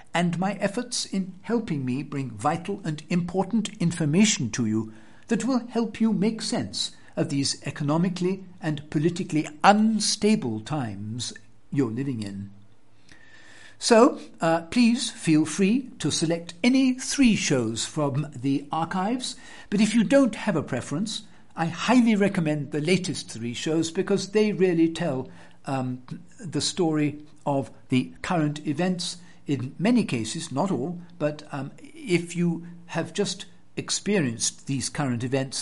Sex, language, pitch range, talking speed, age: male, English, 130-185 Hz, 140 wpm, 60-79